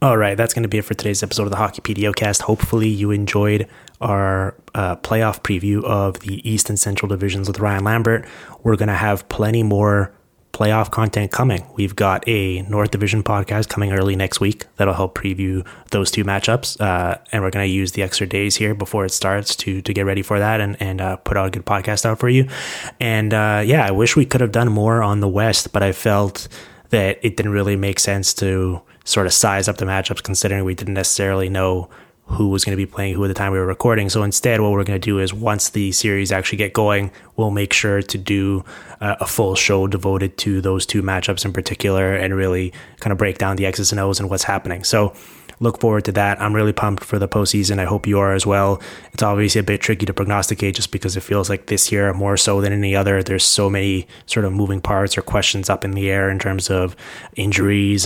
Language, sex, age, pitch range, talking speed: English, male, 20-39, 95-105 Hz, 235 wpm